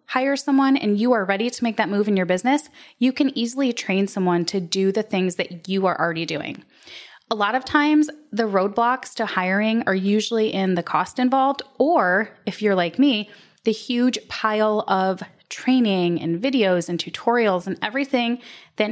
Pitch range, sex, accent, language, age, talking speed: 190-250 Hz, female, American, English, 20-39, 185 wpm